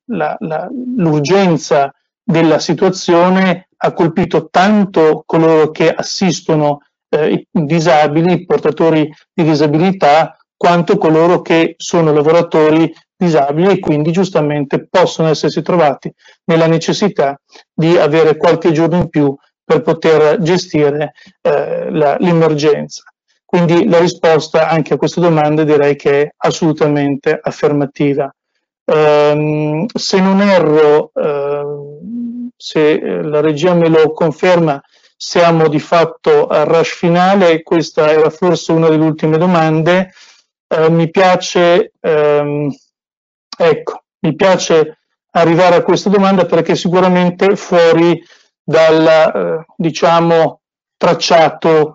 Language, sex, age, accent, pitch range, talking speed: Italian, male, 40-59, native, 155-180 Hz, 110 wpm